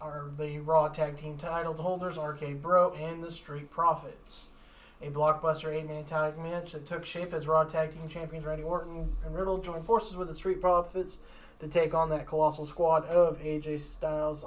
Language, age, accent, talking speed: English, 20-39, American, 190 wpm